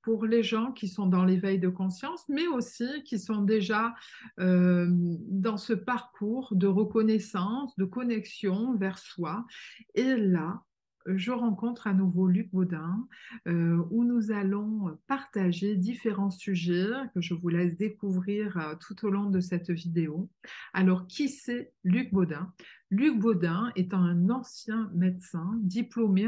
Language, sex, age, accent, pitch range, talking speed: French, female, 50-69, French, 180-225 Hz, 140 wpm